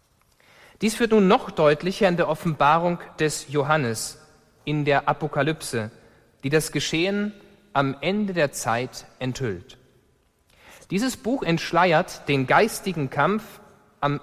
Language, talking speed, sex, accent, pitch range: German, 120 wpm, male, German, 130-190 Hz